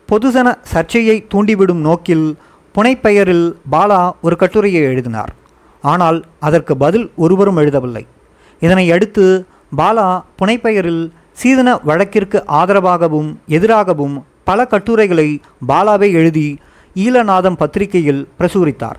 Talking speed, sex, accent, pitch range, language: 90 wpm, male, native, 160-205 Hz, Tamil